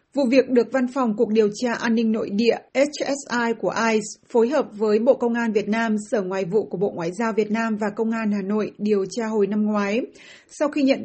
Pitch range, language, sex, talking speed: 210-245 Hz, Vietnamese, female, 245 wpm